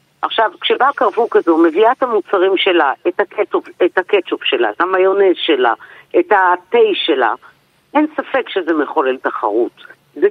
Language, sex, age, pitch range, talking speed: Hebrew, female, 50-69, 175-265 Hz, 145 wpm